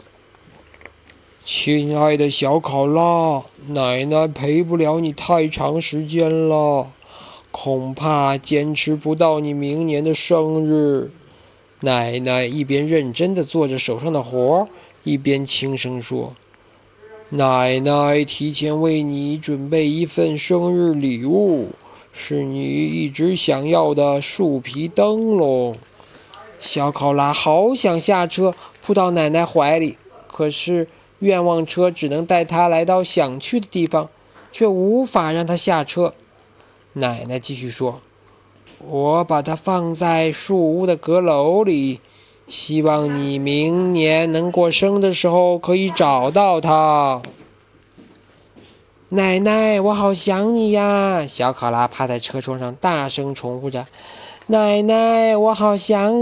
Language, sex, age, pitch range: Chinese, male, 20-39, 140-180 Hz